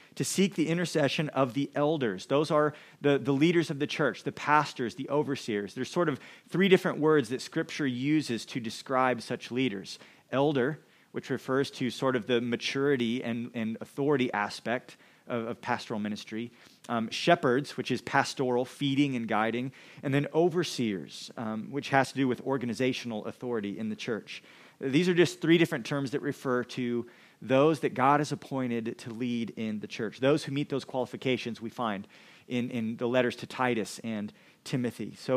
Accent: American